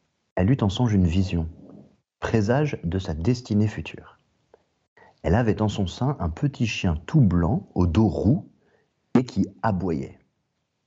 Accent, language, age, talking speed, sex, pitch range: French, French, 40-59, 150 wpm, male, 90-130 Hz